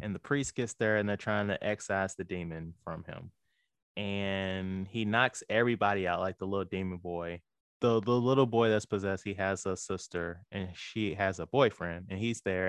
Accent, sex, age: American, male, 20-39